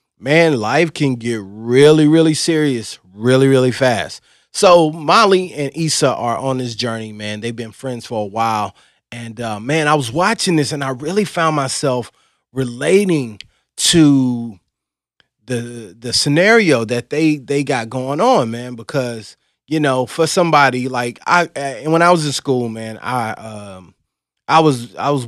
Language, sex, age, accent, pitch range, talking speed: English, male, 30-49, American, 110-140 Hz, 165 wpm